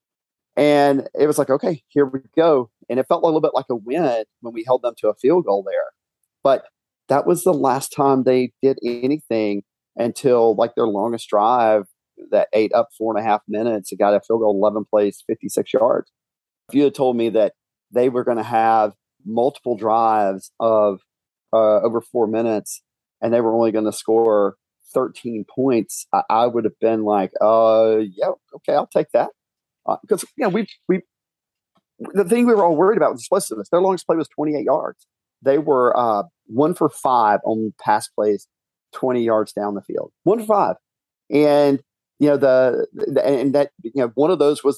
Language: English